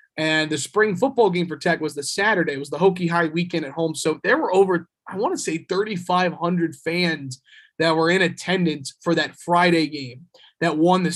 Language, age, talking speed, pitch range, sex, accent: English, 30-49, 210 wpm, 160-185 Hz, male, American